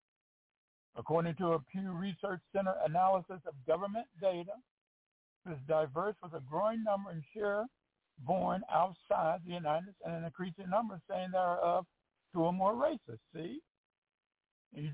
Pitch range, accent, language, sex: 175-210 Hz, American, English, male